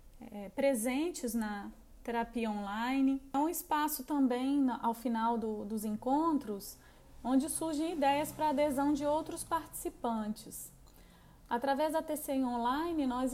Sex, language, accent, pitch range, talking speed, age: female, Portuguese, Brazilian, 240-285 Hz, 115 wpm, 20-39